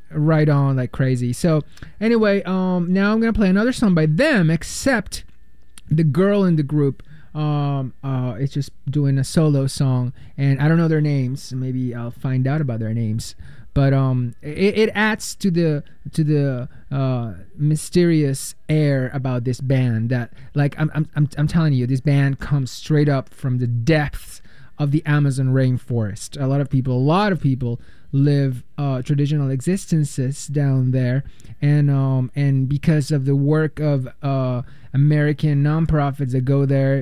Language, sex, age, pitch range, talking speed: English, male, 20-39, 130-155 Hz, 170 wpm